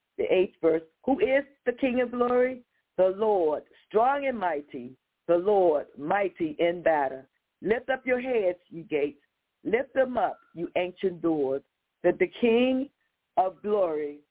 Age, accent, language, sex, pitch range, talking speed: 50-69, American, English, female, 165-220 Hz, 150 wpm